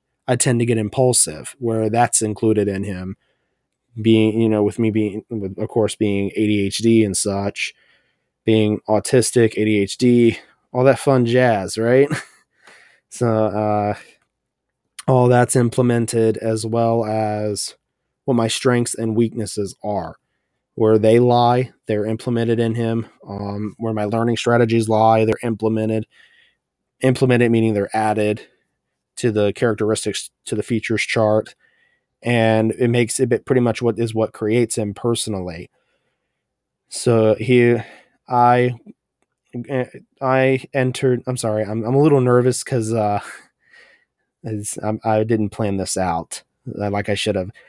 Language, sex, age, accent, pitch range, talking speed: English, male, 20-39, American, 105-120 Hz, 130 wpm